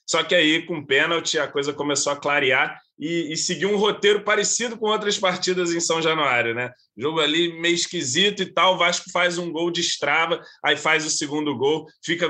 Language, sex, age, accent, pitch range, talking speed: Portuguese, male, 20-39, Brazilian, 140-175 Hz, 215 wpm